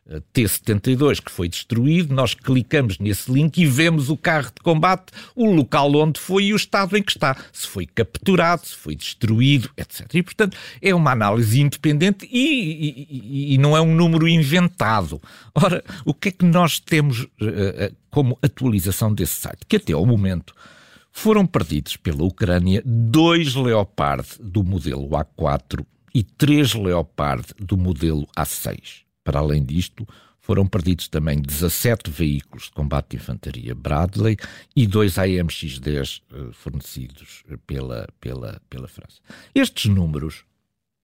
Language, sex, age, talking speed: Portuguese, male, 50-69, 140 wpm